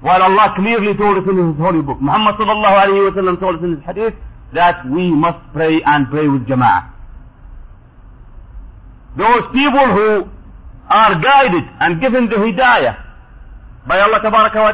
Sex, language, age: male, English, 50-69